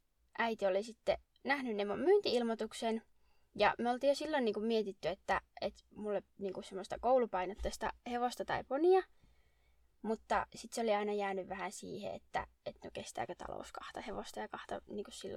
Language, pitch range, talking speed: Finnish, 195-245 Hz, 165 wpm